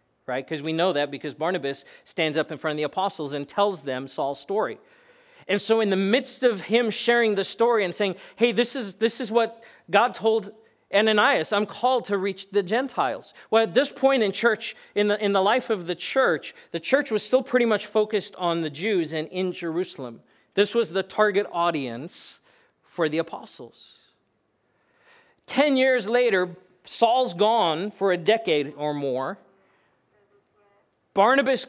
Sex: male